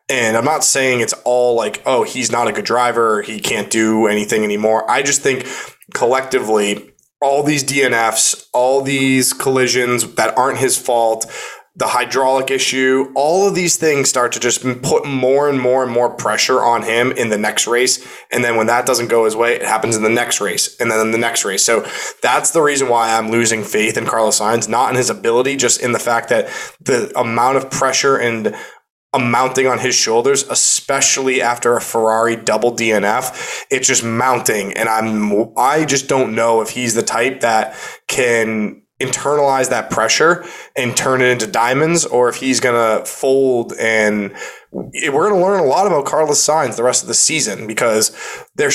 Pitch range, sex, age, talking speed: 115-135 Hz, male, 20-39, 190 wpm